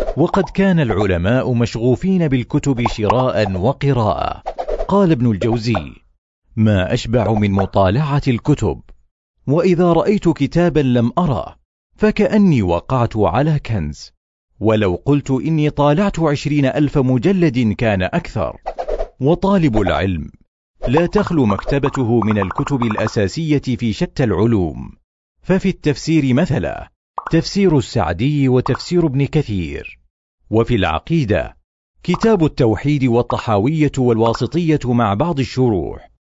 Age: 40-59